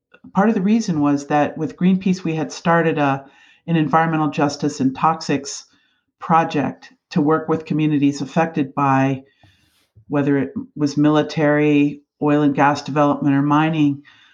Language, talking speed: English, 140 wpm